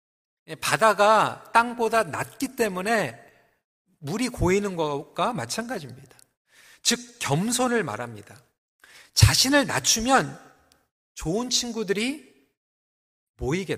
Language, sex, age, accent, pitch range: Korean, male, 40-59, native, 185-255 Hz